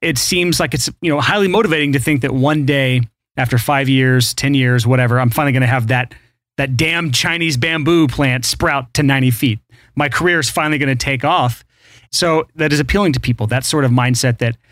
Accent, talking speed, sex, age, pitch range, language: American, 215 wpm, male, 30-49, 120-150 Hz, English